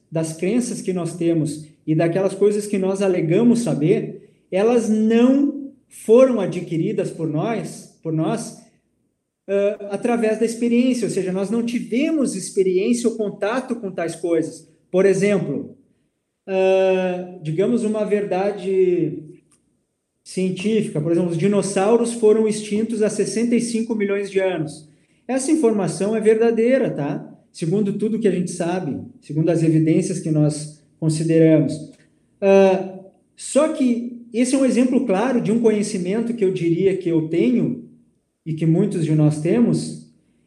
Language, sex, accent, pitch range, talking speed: Portuguese, male, Brazilian, 180-225 Hz, 130 wpm